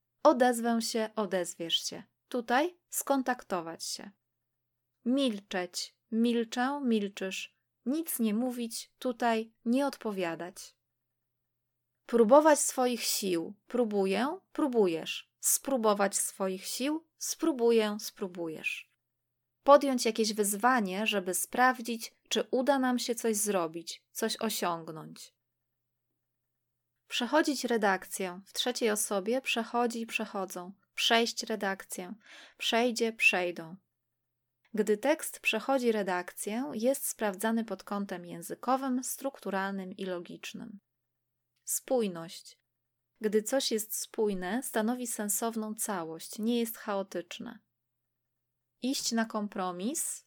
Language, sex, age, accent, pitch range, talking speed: Polish, female, 20-39, native, 180-240 Hz, 90 wpm